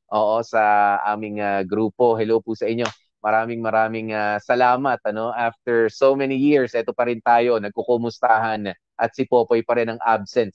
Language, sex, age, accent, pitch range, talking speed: Filipino, male, 20-39, native, 115-160 Hz, 170 wpm